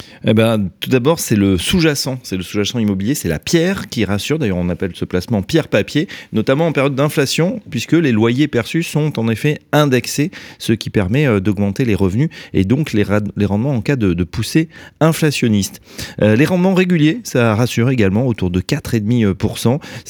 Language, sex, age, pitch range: French, male, 30-49, 95-130 Hz